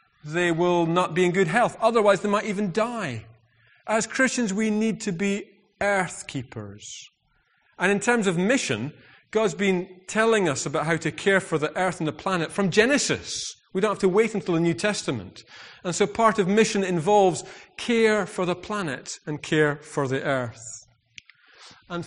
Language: English